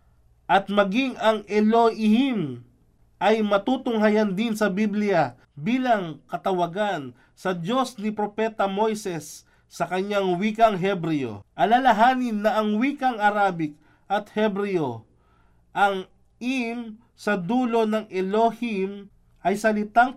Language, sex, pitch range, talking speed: Filipino, male, 170-220 Hz, 105 wpm